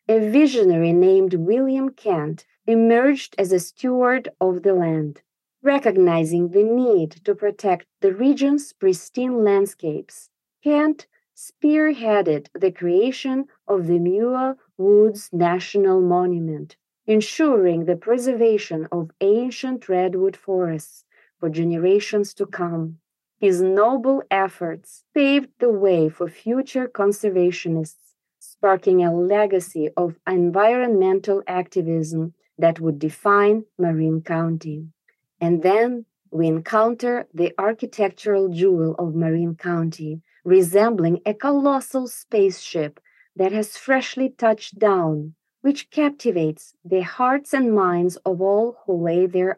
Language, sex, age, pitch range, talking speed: English, female, 30-49, 175-230 Hz, 110 wpm